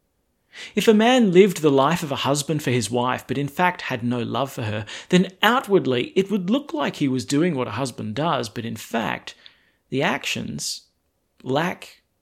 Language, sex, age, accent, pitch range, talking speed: English, male, 40-59, Australian, 120-190 Hz, 190 wpm